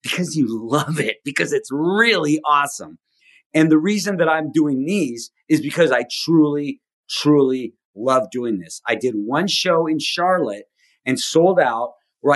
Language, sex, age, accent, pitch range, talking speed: English, male, 40-59, American, 125-155 Hz, 160 wpm